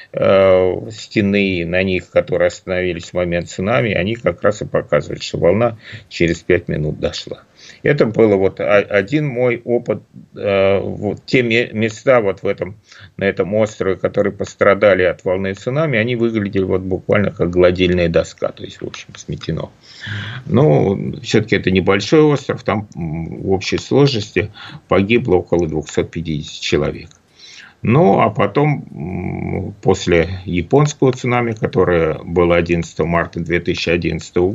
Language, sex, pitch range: Russian, male, 85-120 Hz